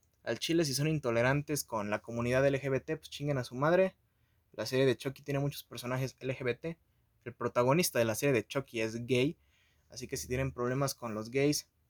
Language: Spanish